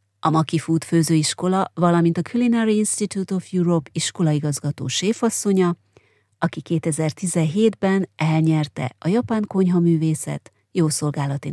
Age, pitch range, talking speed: 30-49, 160-190 Hz, 105 wpm